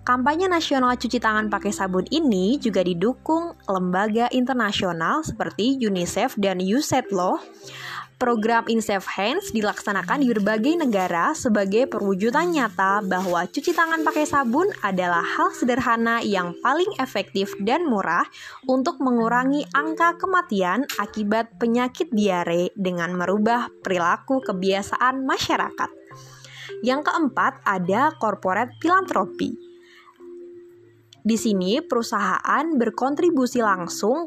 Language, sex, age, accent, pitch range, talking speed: Indonesian, female, 20-39, native, 190-290 Hz, 110 wpm